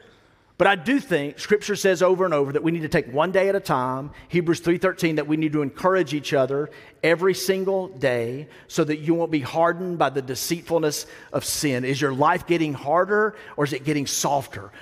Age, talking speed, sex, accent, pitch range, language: 40-59, 210 wpm, male, American, 140-180 Hz, English